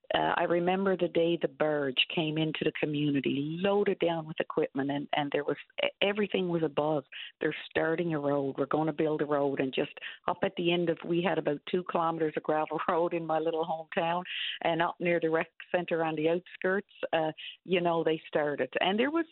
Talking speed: 210 wpm